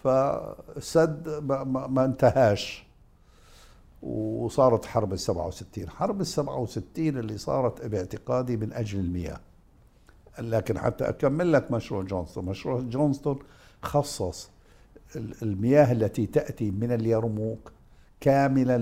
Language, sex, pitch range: Arabic, male, 100-135 Hz